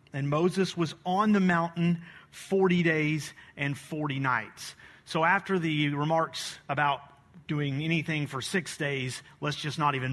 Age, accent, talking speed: 40-59, American, 150 wpm